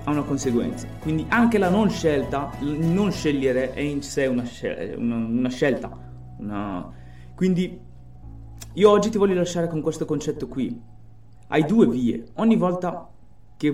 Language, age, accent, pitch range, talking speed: Italian, 20-39, native, 125-170 Hz, 140 wpm